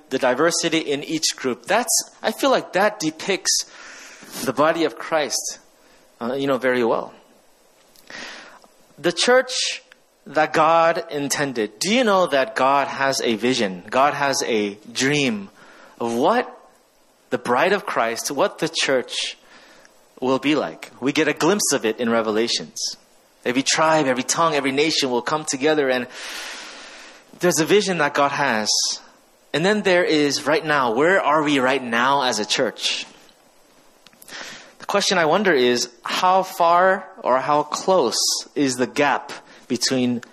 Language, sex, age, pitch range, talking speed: English, male, 30-49, 125-170 Hz, 150 wpm